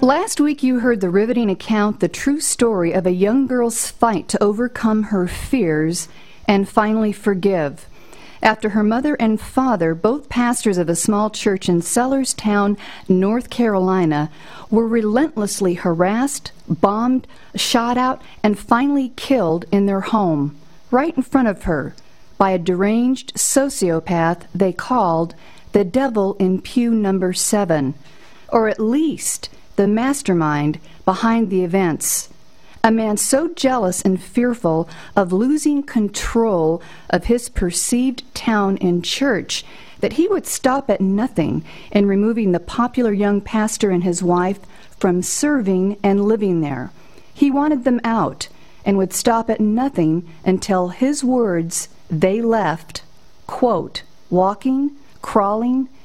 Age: 50-69